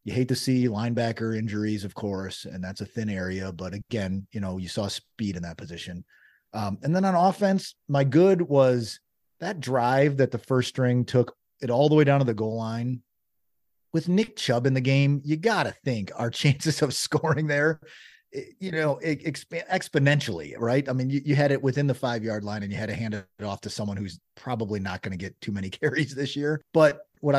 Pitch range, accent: 105-145 Hz, American